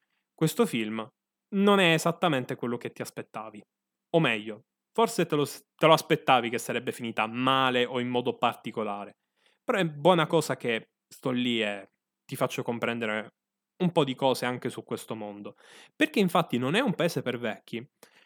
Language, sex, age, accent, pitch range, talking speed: Italian, male, 10-29, native, 120-170 Hz, 170 wpm